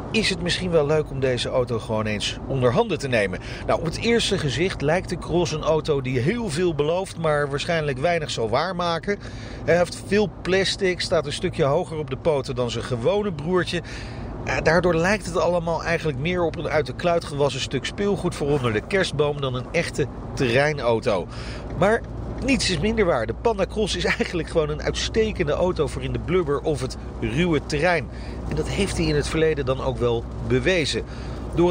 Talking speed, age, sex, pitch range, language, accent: 195 wpm, 40-59, male, 135-185 Hz, Dutch, Dutch